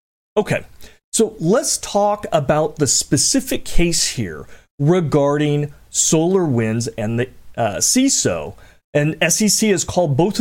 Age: 40-59